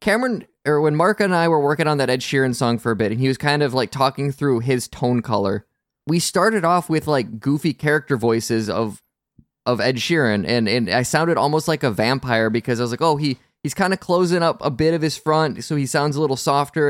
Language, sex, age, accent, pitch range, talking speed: English, male, 20-39, American, 125-160 Hz, 245 wpm